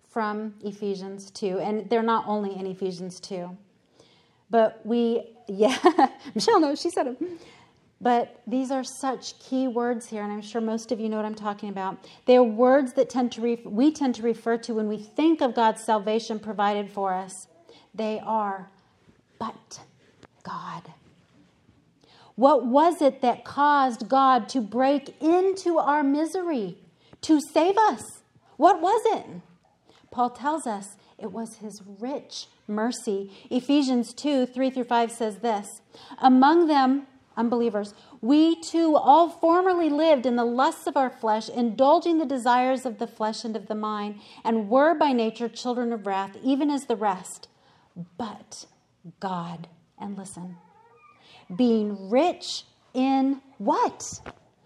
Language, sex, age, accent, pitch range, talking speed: English, female, 40-59, American, 210-275 Hz, 145 wpm